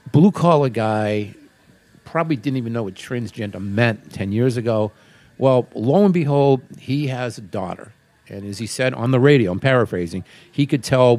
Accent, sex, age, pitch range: American, male, 50-69, 105-135 Hz